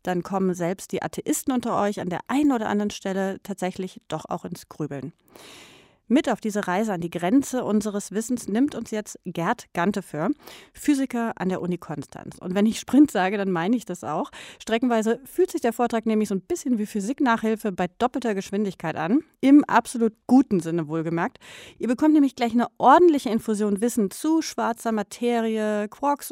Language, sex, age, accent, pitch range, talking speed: German, female, 30-49, German, 185-245 Hz, 180 wpm